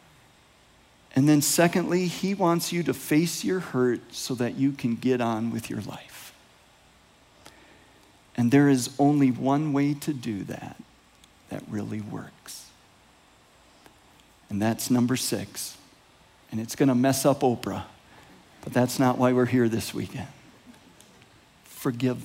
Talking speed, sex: 135 wpm, male